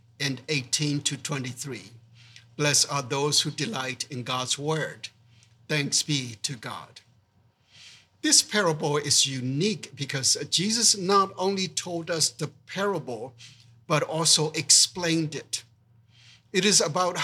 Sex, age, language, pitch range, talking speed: male, 60-79, English, 125-165 Hz, 120 wpm